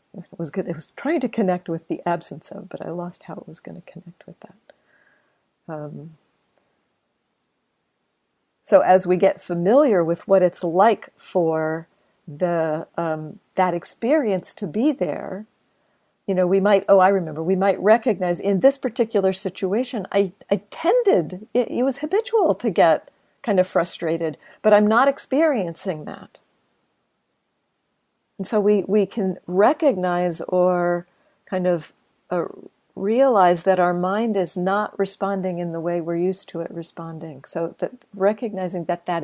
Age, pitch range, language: 50-69, 175-205 Hz, English